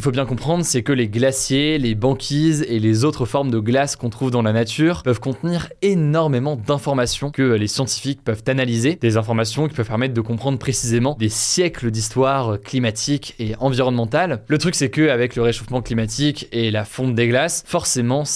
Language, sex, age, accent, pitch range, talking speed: French, male, 20-39, French, 120-150 Hz, 190 wpm